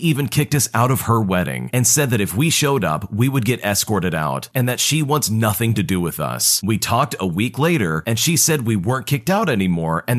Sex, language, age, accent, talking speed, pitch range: male, English, 40-59, American, 245 wpm, 100-135 Hz